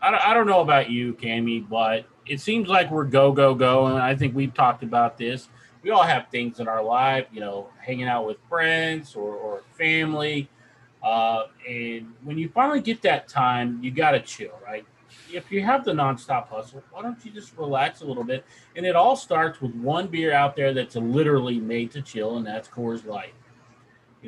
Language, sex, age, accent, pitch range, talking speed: English, male, 30-49, American, 125-200 Hz, 205 wpm